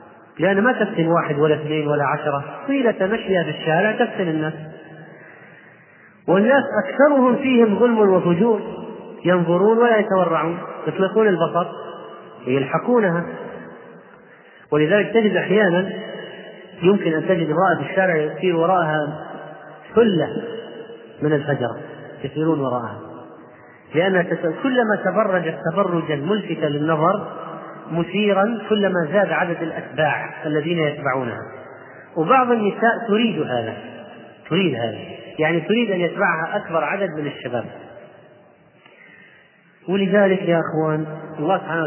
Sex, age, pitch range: male, 30-49, 150-195 Hz